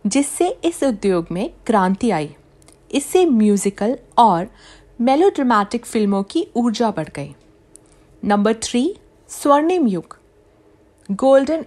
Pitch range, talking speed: 190-270 Hz, 105 wpm